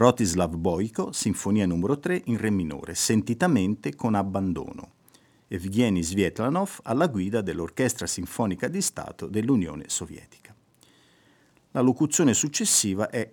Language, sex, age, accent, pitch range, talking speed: Italian, male, 50-69, native, 90-120 Hz, 115 wpm